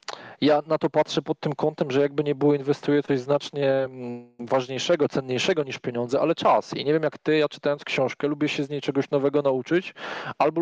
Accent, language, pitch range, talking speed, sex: native, Polish, 135-170 Hz, 205 wpm, male